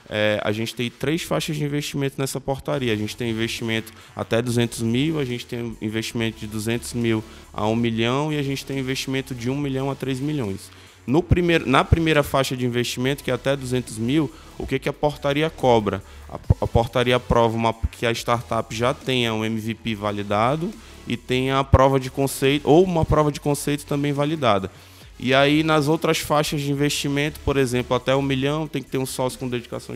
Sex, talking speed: male, 200 wpm